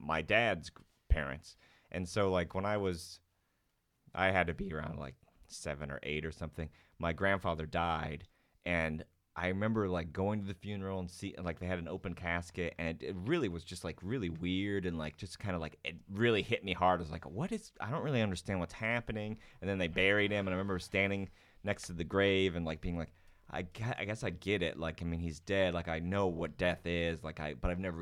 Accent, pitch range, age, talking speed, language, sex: American, 85-100 Hz, 30-49, 230 wpm, English, male